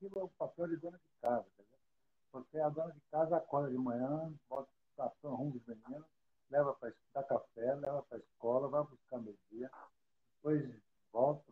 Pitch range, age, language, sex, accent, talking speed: 115-170 Hz, 60-79, Portuguese, male, Brazilian, 190 wpm